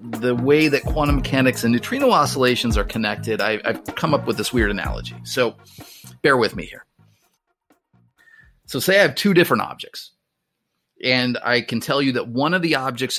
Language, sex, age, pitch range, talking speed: English, male, 40-59, 110-150 Hz, 175 wpm